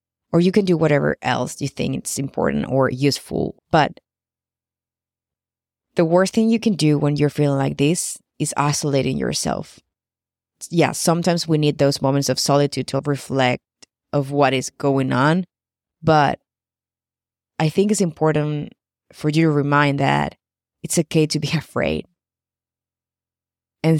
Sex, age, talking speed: female, 20-39, 145 wpm